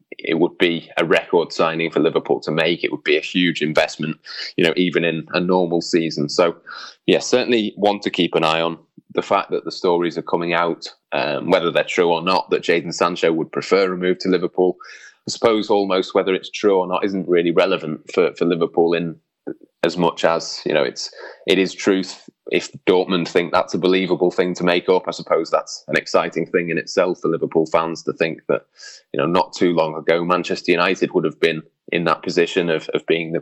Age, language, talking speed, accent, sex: 20-39, English, 215 wpm, British, male